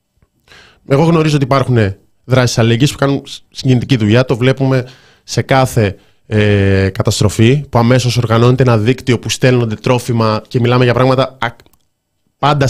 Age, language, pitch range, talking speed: 20-39, Greek, 110-140 Hz, 135 wpm